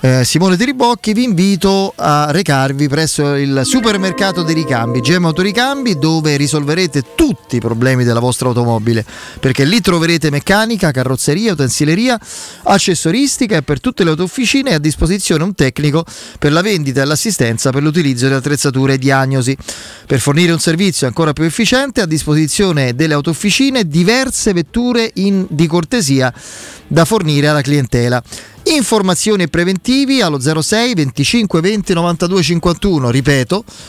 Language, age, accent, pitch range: Italian, 30-49, native, 140-200 Hz